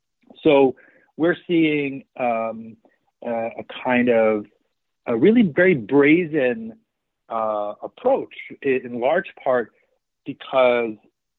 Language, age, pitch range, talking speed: English, 40-59, 110-145 Hz, 95 wpm